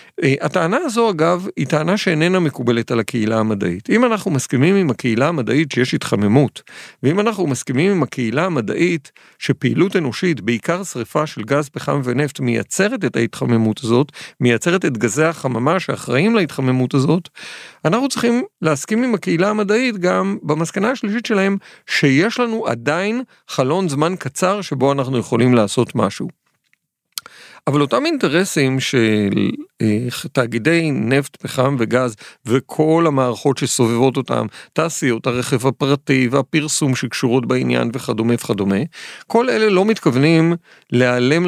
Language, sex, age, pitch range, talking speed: Hebrew, male, 50-69, 125-175 Hz, 130 wpm